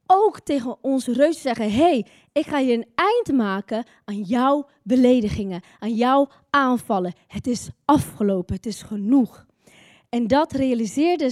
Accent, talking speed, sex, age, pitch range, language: Dutch, 145 wpm, female, 20-39, 225-315 Hz, Dutch